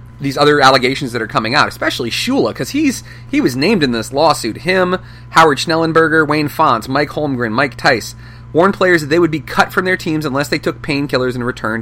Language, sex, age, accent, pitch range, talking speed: English, male, 30-49, American, 120-160 Hz, 215 wpm